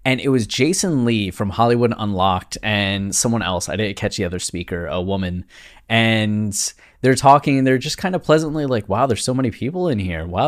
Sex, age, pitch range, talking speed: male, 20-39, 105-150 Hz, 210 wpm